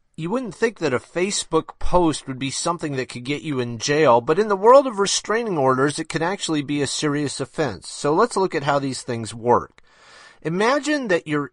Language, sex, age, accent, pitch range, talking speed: English, male, 40-59, American, 130-175 Hz, 215 wpm